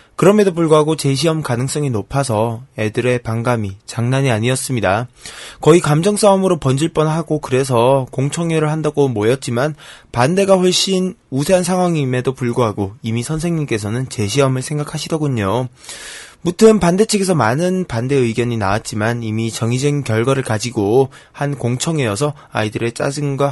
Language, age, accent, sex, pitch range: Korean, 20-39, native, male, 120-160 Hz